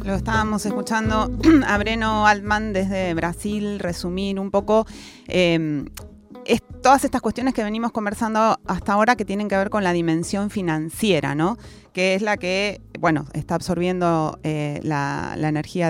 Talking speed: 155 wpm